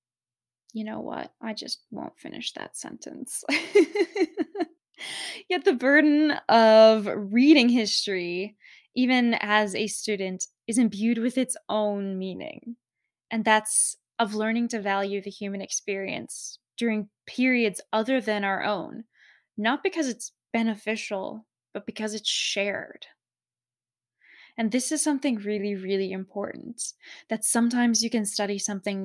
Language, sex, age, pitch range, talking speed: English, female, 10-29, 195-235 Hz, 125 wpm